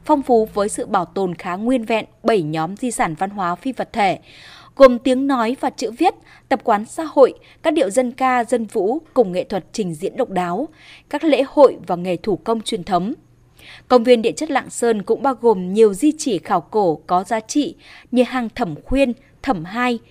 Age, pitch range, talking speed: 20-39, 200-260 Hz, 220 wpm